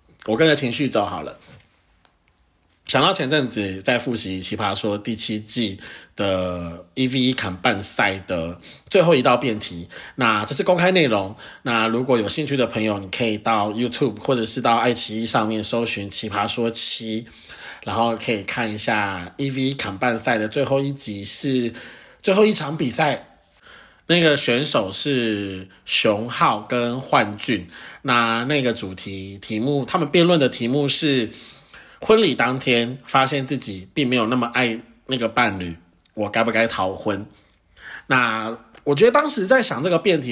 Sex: male